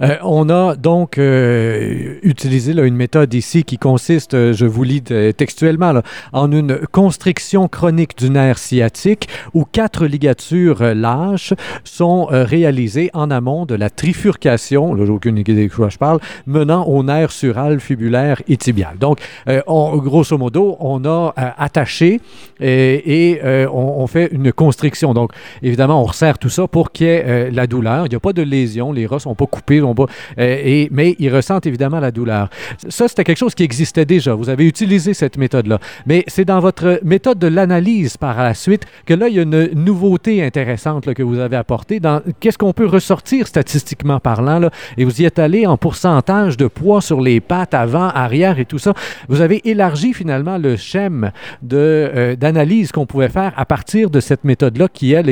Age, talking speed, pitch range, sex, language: 50-69, 195 wpm, 130-175 Hz, male, French